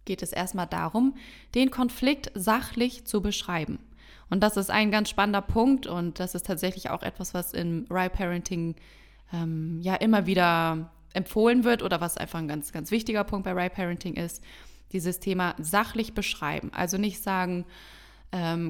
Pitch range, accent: 175-225 Hz, German